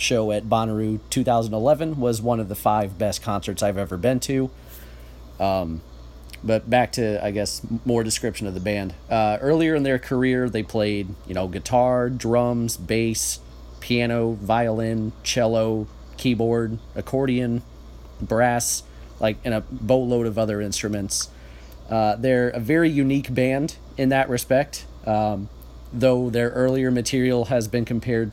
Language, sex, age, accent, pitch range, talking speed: English, male, 30-49, American, 100-125 Hz, 145 wpm